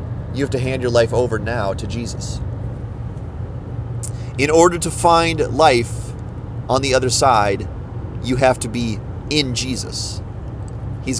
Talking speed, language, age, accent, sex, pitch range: 140 wpm, English, 30-49, American, male, 110-125 Hz